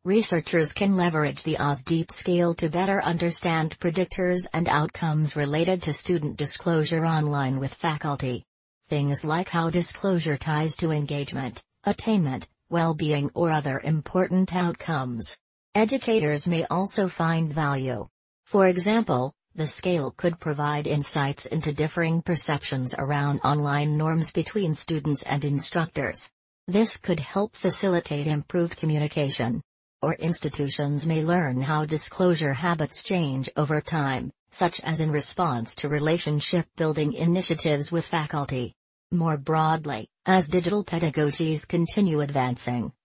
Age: 40-59